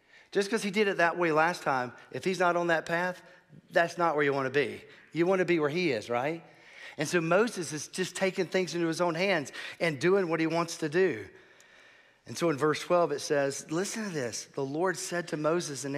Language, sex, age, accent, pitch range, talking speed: English, male, 40-59, American, 140-190 Hz, 240 wpm